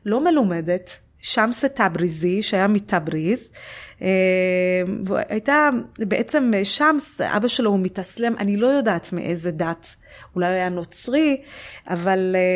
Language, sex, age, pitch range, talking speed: Hebrew, female, 30-49, 185-250 Hz, 105 wpm